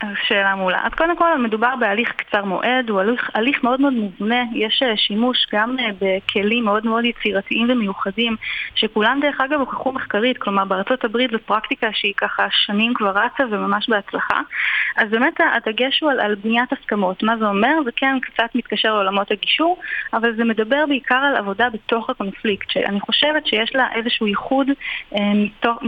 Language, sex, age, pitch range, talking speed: Hebrew, female, 20-39, 210-255 Hz, 165 wpm